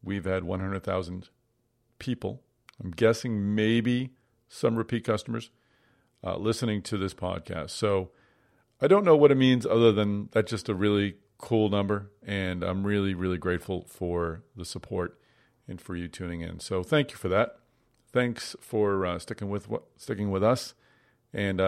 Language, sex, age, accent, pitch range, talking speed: English, male, 40-59, American, 95-115 Hz, 160 wpm